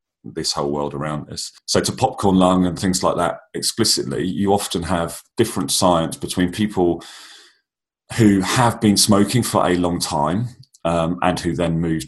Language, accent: English, British